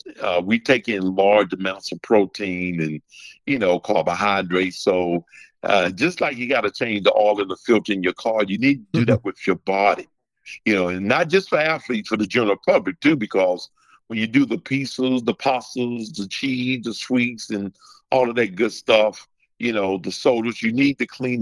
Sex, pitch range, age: male, 95-130 Hz, 50-69